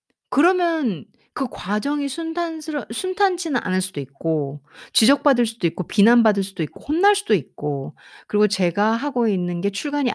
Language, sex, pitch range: Korean, female, 170-275 Hz